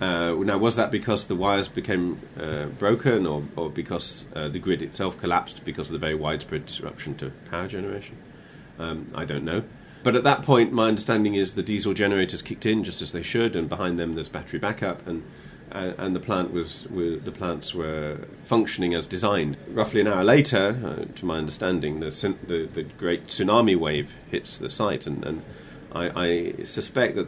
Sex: male